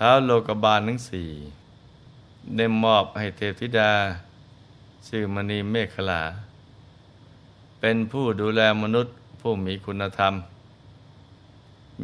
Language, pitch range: Thai, 100-120 Hz